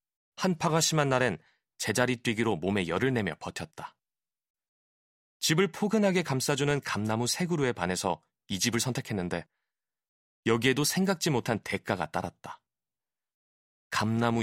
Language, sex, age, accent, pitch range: Korean, male, 30-49, native, 105-155 Hz